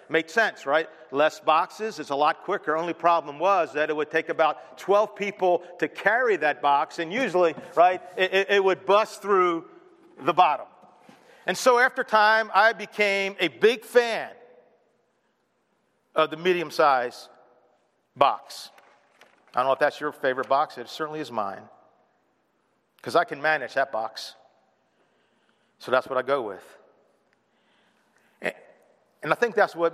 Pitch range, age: 160-220 Hz, 50-69